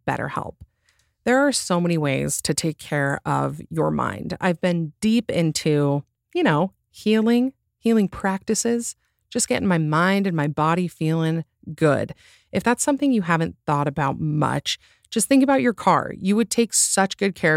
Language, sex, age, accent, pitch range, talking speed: English, female, 30-49, American, 150-200 Hz, 170 wpm